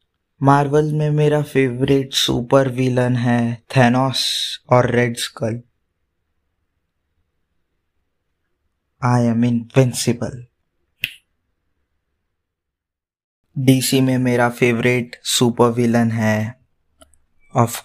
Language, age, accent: Hindi, 20-39, native